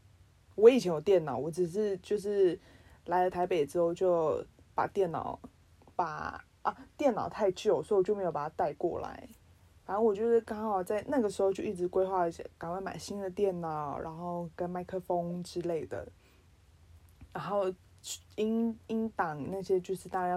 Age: 20-39